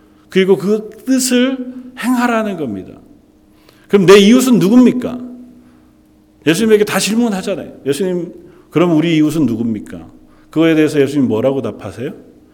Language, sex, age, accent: Korean, male, 40-59, native